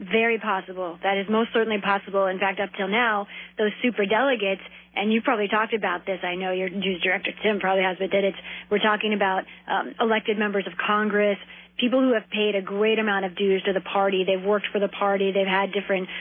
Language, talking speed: English, 220 wpm